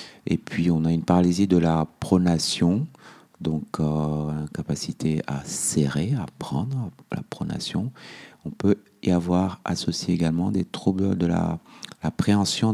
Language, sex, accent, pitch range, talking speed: French, male, French, 75-90 Hz, 145 wpm